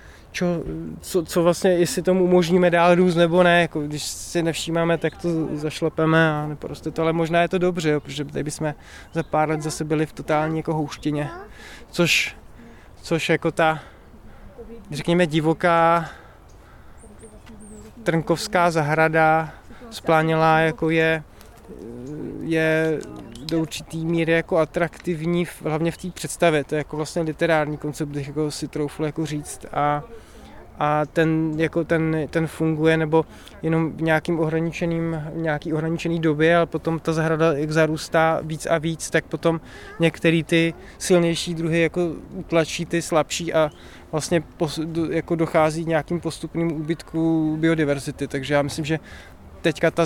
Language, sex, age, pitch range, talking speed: Czech, male, 20-39, 150-165 Hz, 145 wpm